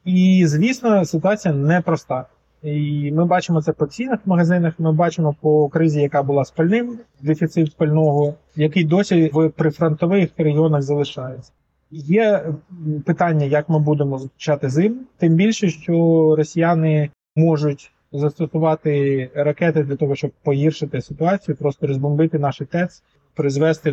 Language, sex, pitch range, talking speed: Ukrainian, male, 150-175 Hz, 125 wpm